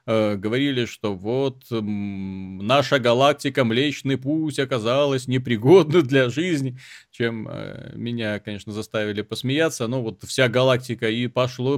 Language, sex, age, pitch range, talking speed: Russian, male, 30-49, 115-145 Hz, 110 wpm